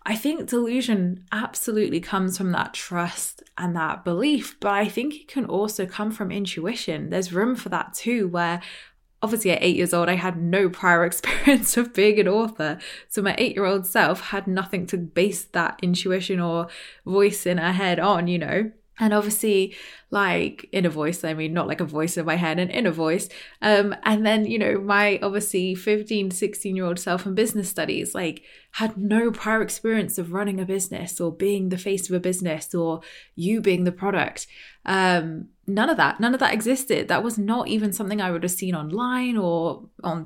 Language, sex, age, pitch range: English, female, 20-39, 175-215 Hz